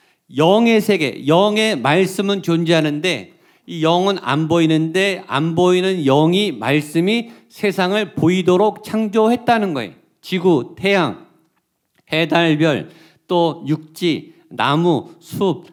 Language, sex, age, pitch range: Korean, male, 50-69, 165-210 Hz